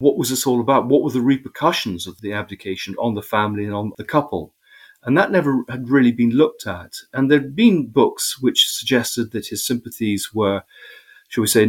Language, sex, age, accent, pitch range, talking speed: English, male, 40-59, British, 100-130 Hz, 205 wpm